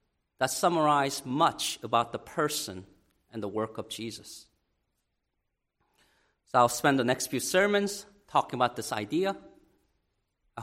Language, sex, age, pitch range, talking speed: English, male, 40-59, 110-155 Hz, 130 wpm